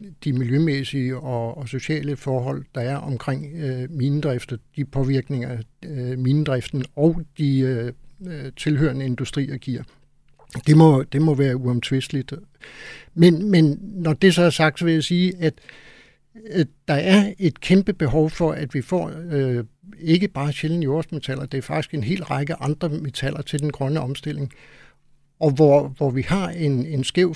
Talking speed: 160 wpm